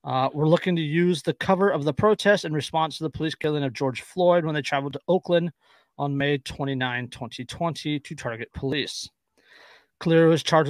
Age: 30-49